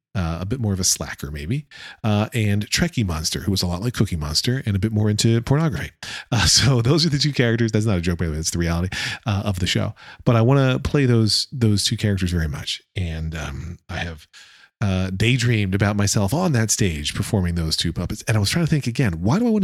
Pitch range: 90-115 Hz